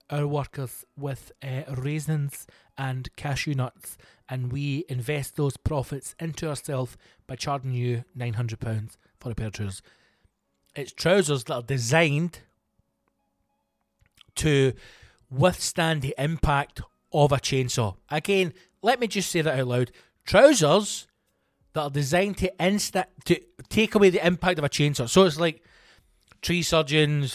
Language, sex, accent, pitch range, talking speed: English, male, British, 120-155 Hz, 135 wpm